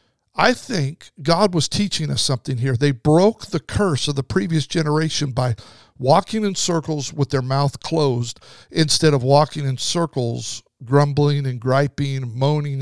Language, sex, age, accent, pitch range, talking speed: English, male, 50-69, American, 130-165 Hz, 155 wpm